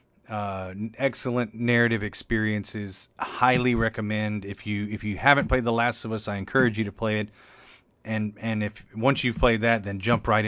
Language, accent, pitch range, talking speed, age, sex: English, American, 105-120 Hz, 185 wpm, 30-49, male